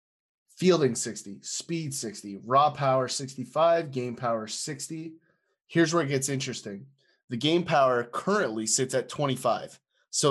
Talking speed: 135 wpm